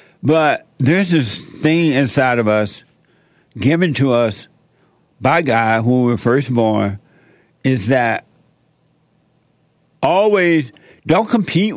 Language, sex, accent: English, male, American